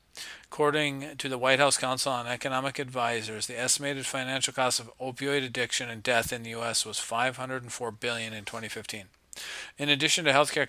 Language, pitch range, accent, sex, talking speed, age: English, 115-135 Hz, American, male, 170 wpm, 40-59